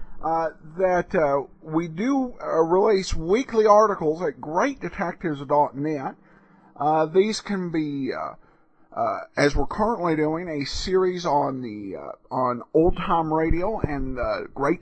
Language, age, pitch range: English, 50-69, 150-200 Hz